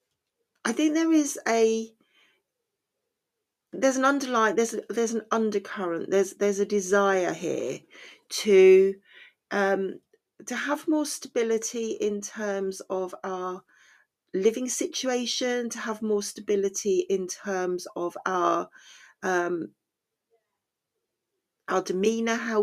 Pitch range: 190-285 Hz